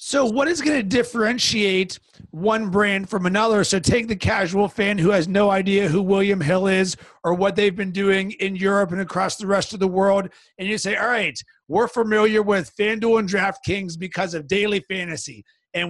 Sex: male